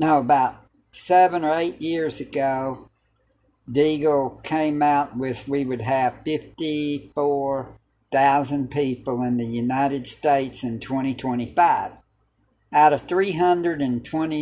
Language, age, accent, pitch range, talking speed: English, 60-79, American, 125-155 Hz, 90 wpm